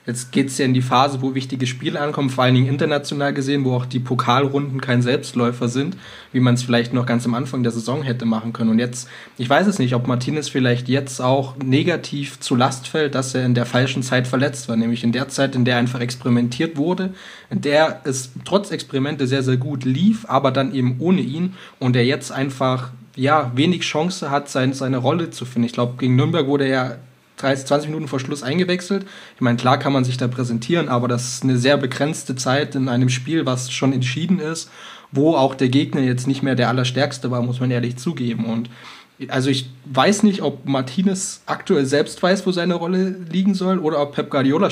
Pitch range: 125-145 Hz